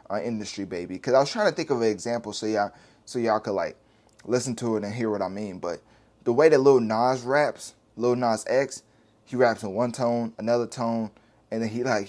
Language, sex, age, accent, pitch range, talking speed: English, male, 20-39, American, 105-125 Hz, 235 wpm